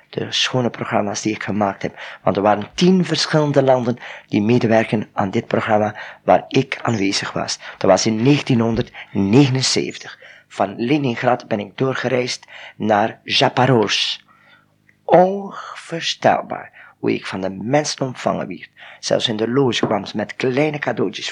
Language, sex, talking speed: Dutch, male, 140 wpm